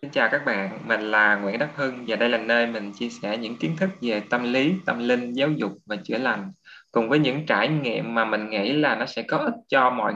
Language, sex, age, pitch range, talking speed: Vietnamese, male, 20-39, 105-135 Hz, 260 wpm